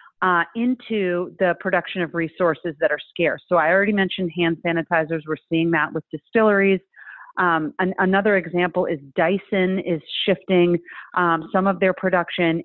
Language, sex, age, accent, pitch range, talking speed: English, female, 30-49, American, 170-200 Hz, 155 wpm